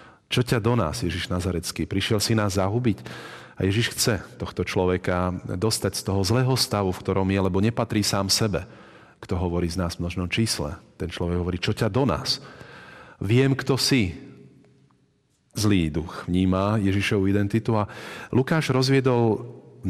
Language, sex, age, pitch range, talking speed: Slovak, male, 40-59, 90-110 Hz, 160 wpm